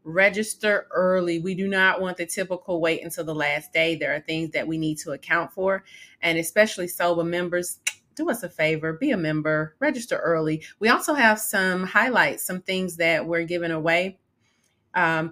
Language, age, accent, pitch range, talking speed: English, 30-49, American, 165-190 Hz, 185 wpm